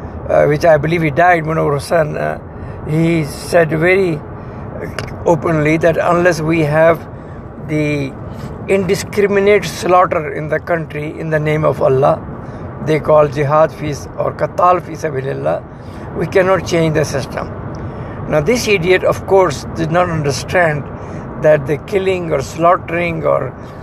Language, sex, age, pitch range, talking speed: English, male, 60-79, 150-185 Hz, 135 wpm